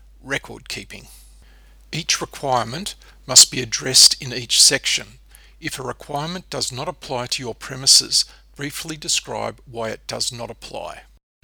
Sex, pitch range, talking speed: male, 120-145 Hz, 135 wpm